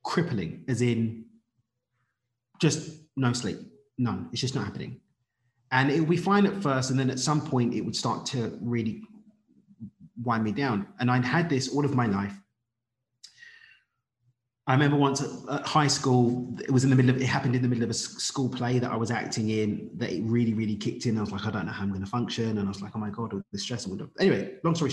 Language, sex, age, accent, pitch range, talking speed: English, male, 30-49, British, 110-130 Hz, 225 wpm